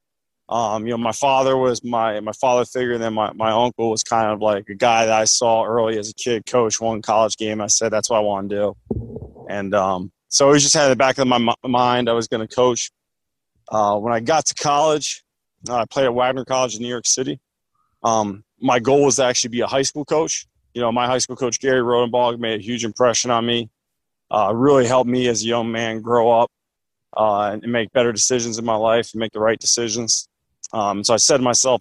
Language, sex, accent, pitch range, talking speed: English, male, American, 110-130 Hz, 240 wpm